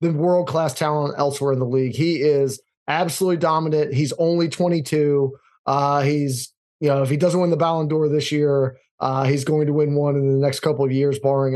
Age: 20-39